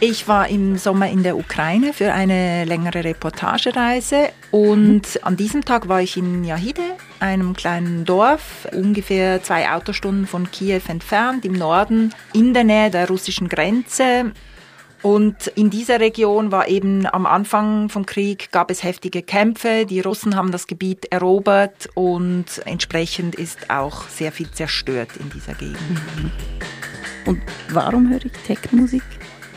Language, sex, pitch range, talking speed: German, female, 185-225 Hz, 145 wpm